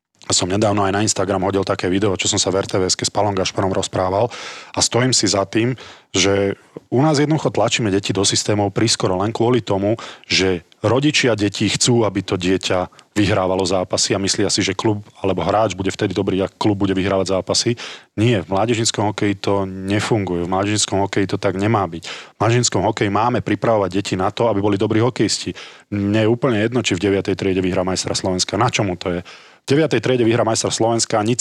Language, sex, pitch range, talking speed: Slovak, male, 95-115 Hz, 200 wpm